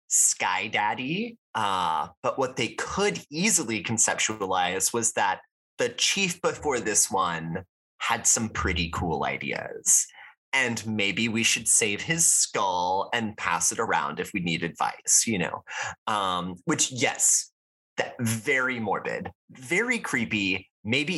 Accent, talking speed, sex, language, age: American, 135 wpm, male, English, 30-49